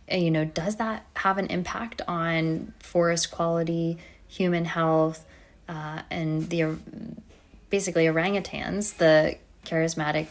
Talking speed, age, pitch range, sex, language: 110 wpm, 20-39, 155-175 Hz, female, English